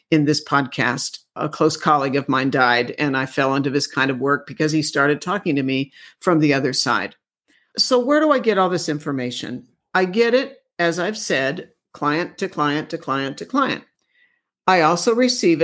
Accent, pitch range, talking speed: American, 150-185 Hz, 195 wpm